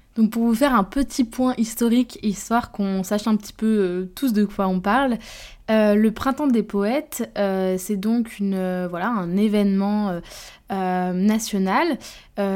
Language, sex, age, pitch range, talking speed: French, female, 20-39, 190-225 Hz, 160 wpm